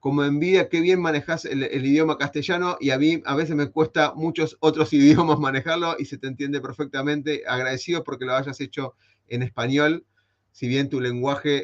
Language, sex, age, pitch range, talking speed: Spanish, male, 30-49, 135-165 Hz, 185 wpm